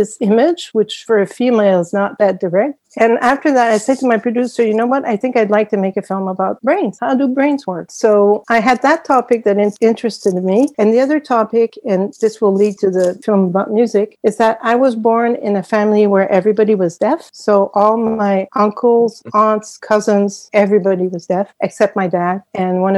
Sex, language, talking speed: female, English, 215 wpm